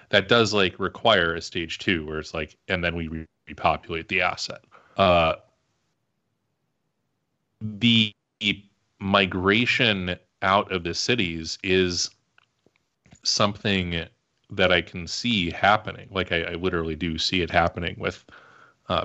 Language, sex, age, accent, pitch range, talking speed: English, male, 30-49, American, 85-105 Hz, 130 wpm